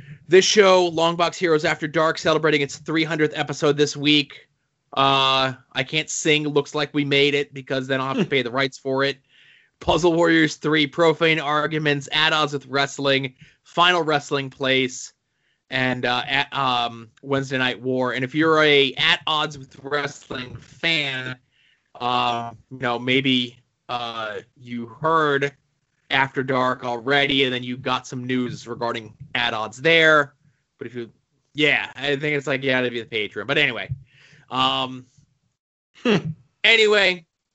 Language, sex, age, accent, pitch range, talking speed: English, male, 20-39, American, 130-155 Hz, 155 wpm